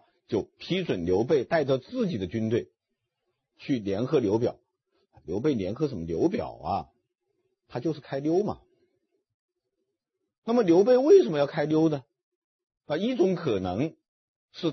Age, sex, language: 50-69, male, Chinese